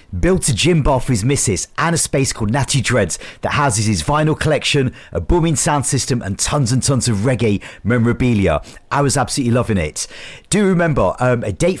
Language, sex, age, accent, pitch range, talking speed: English, male, 40-59, British, 110-140 Hz, 200 wpm